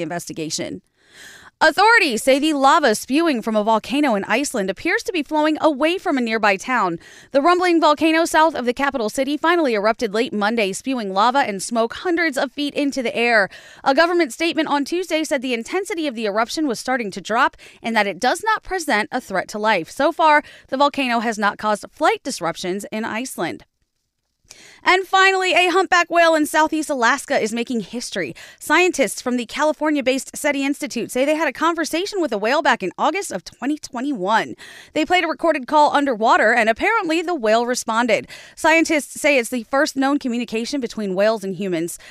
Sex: female